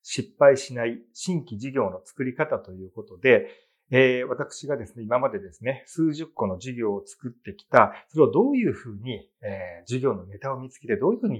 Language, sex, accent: Japanese, male, native